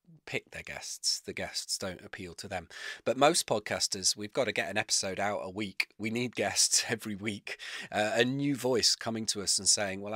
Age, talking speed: 30-49, 215 wpm